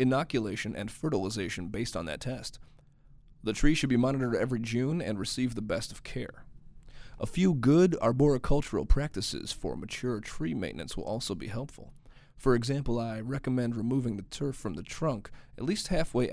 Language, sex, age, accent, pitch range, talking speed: English, male, 30-49, American, 115-140 Hz, 170 wpm